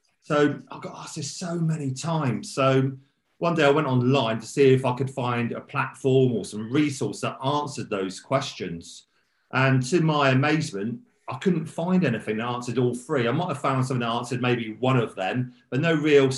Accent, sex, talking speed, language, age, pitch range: British, male, 200 wpm, English, 40-59, 120-140 Hz